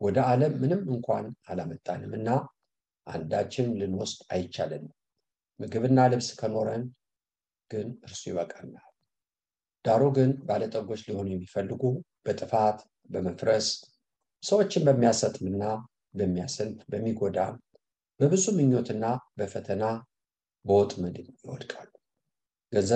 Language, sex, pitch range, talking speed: English, male, 100-130 Hz, 75 wpm